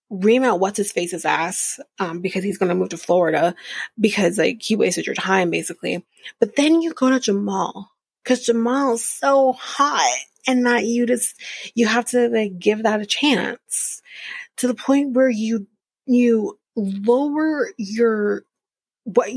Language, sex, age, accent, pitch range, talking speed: English, female, 30-49, American, 200-245 Hz, 160 wpm